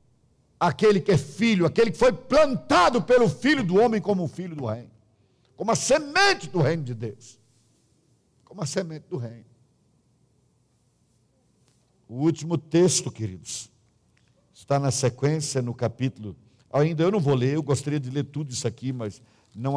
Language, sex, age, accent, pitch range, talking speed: Portuguese, male, 60-79, Brazilian, 120-165 Hz, 160 wpm